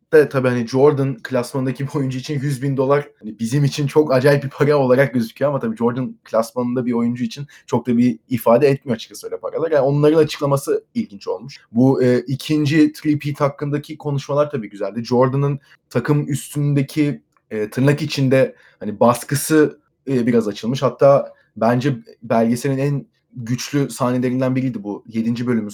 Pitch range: 125-145 Hz